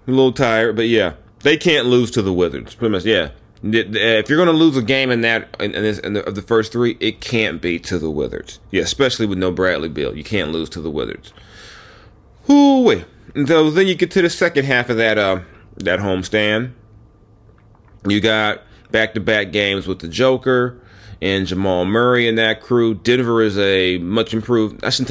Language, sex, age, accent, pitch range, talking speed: English, male, 30-49, American, 100-115 Hz, 200 wpm